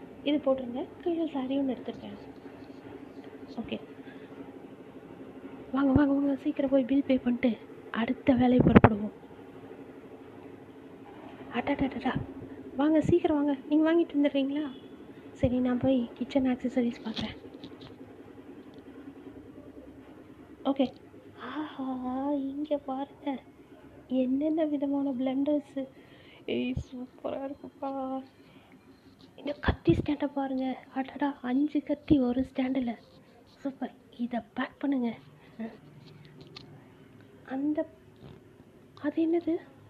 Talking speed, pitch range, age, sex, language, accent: 35 wpm, 250-295 Hz, 20-39, female, Tamil, native